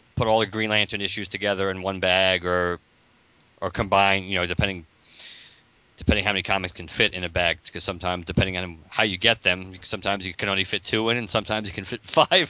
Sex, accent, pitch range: male, American, 90-115 Hz